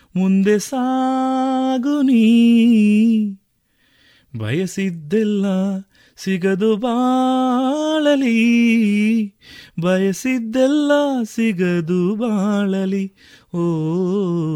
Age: 30-49